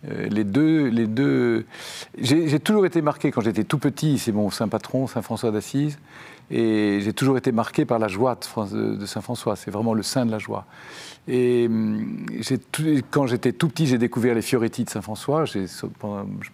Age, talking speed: 50-69, 180 wpm